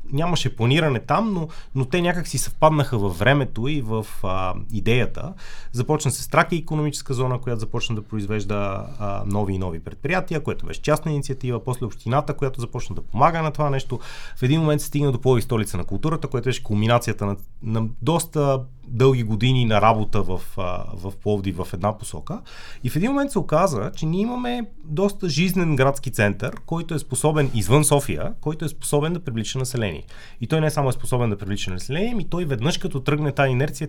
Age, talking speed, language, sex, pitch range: 30-49, 195 wpm, Bulgarian, male, 105-150 Hz